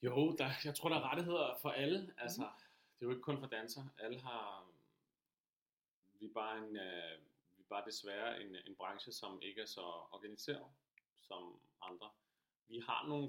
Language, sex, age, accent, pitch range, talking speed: Danish, male, 30-49, native, 85-110 Hz, 180 wpm